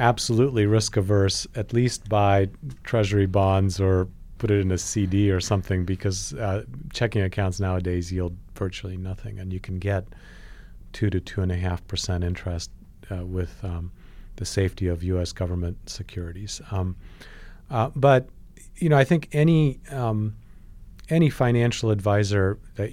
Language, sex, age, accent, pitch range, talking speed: English, male, 40-59, American, 95-105 Hz, 150 wpm